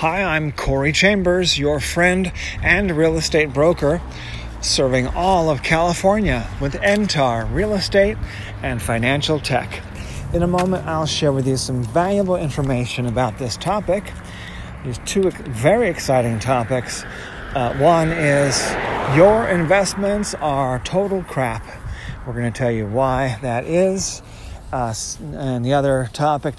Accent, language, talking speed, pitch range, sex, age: American, English, 135 wpm, 120-155 Hz, male, 50-69